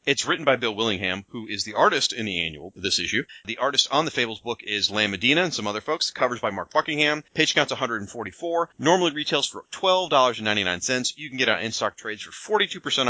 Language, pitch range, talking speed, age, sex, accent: English, 110-150 Hz, 205 wpm, 30-49, male, American